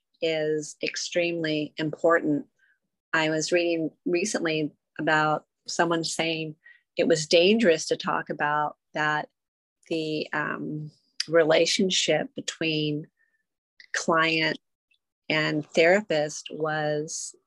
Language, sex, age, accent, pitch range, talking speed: English, female, 30-49, American, 155-170 Hz, 85 wpm